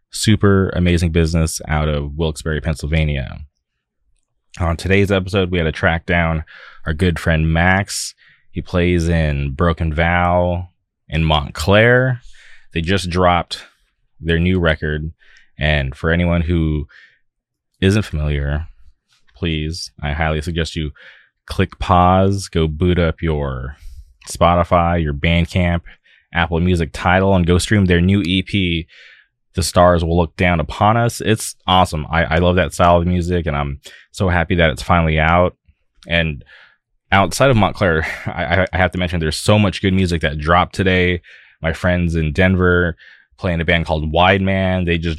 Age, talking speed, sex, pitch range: 20-39, 150 wpm, male, 80-90 Hz